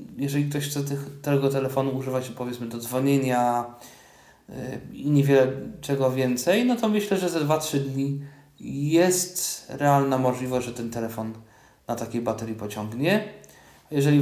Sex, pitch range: male, 115-140 Hz